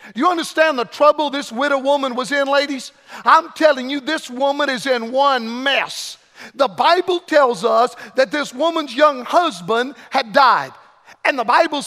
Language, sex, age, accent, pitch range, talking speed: English, male, 50-69, American, 250-300 Hz, 165 wpm